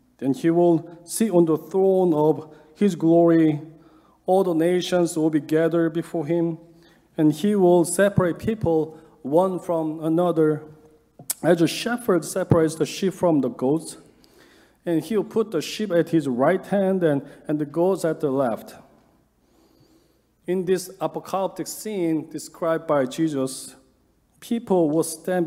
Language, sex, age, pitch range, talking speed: English, male, 40-59, 150-180 Hz, 145 wpm